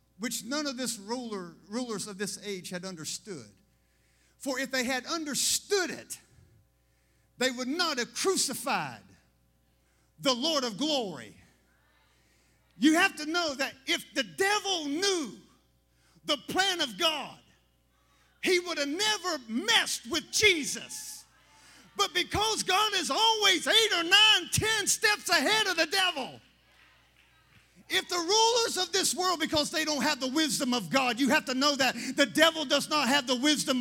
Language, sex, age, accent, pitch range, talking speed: English, male, 50-69, American, 250-325 Hz, 155 wpm